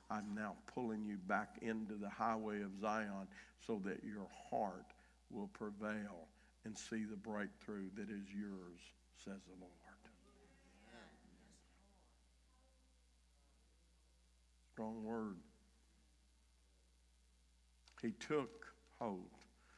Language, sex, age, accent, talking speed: English, male, 60-79, American, 95 wpm